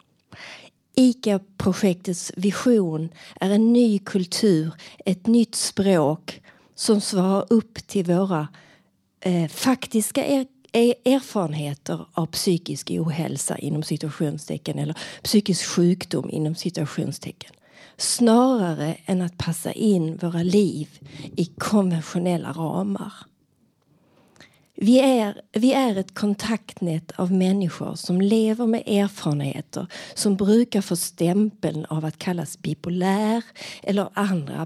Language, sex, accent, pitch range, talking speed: Swedish, female, native, 165-215 Hz, 105 wpm